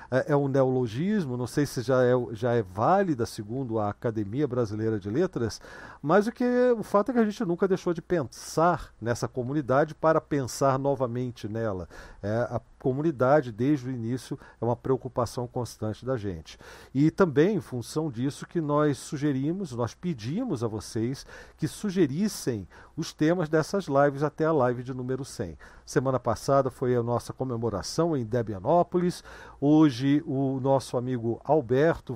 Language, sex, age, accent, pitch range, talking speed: Portuguese, male, 50-69, Brazilian, 125-165 Hz, 155 wpm